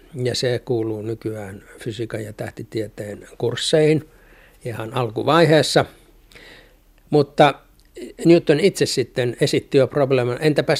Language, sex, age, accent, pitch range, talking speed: Finnish, male, 60-79, native, 115-145 Hz, 100 wpm